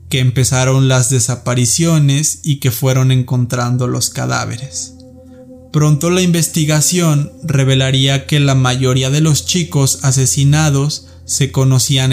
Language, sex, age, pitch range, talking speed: Spanish, male, 20-39, 130-145 Hz, 115 wpm